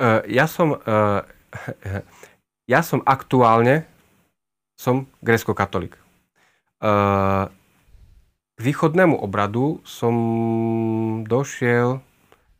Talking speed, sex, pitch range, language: 55 wpm, male, 100-120 Hz, Slovak